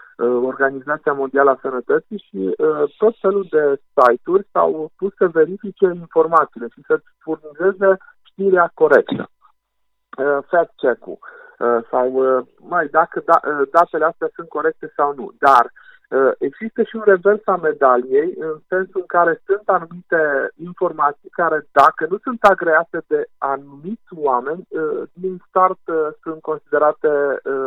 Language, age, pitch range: Romanian, 50-69, 155-215 Hz